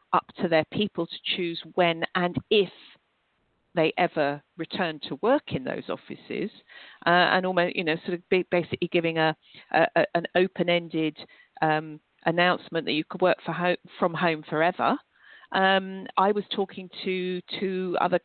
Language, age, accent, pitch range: English, 50-69, British, 165-210 Hz